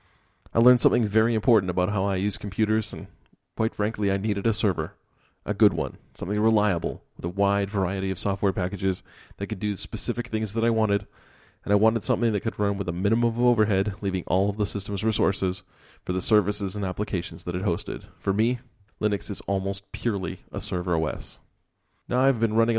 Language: English